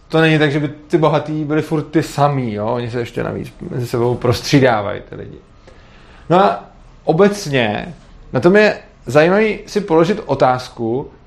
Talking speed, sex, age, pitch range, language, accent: 155 wpm, male, 30-49, 150-195 Hz, Czech, native